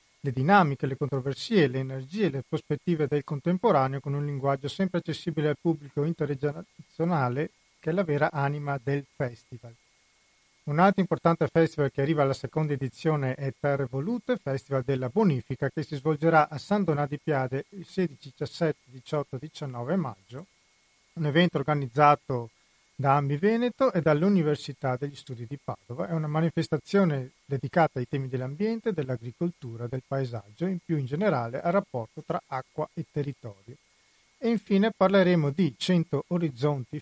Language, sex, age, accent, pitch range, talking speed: Italian, male, 40-59, native, 135-170 Hz, 150 wpm